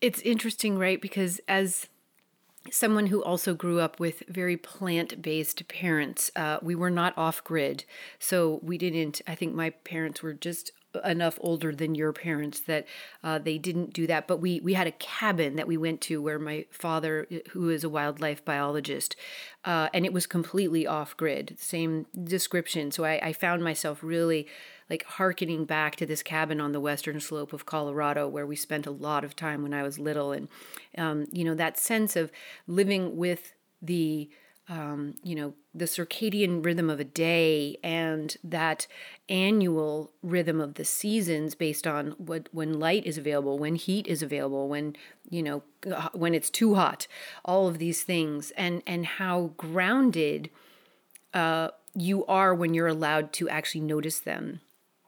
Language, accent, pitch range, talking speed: English, American, 155-180 Hz, 170 wpm